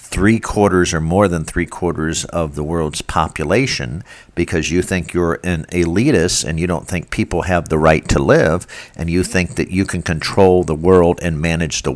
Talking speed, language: 185 wpm, English